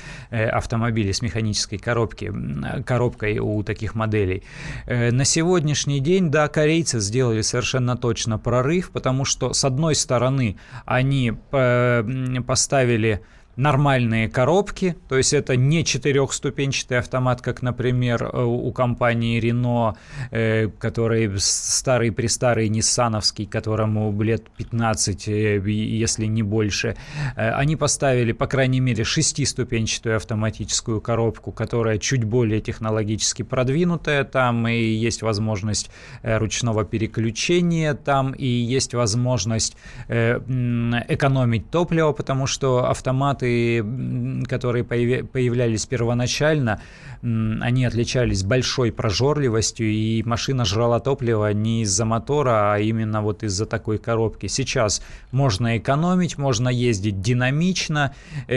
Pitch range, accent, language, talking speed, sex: 110-135 Hz, native, Russian, 105 wpm, male